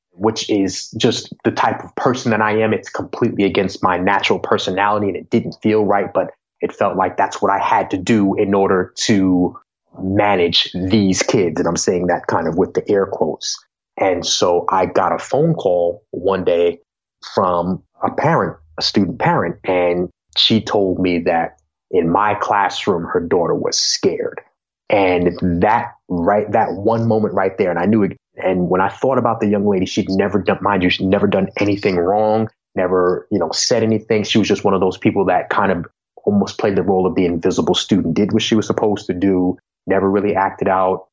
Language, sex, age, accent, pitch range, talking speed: English, male, 30-49, American, 90-110 Hz, 200 wpm